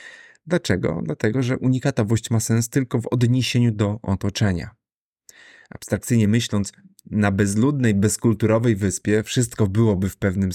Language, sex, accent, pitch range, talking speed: Polish, male, native, 100-125 Hz, 120 wpm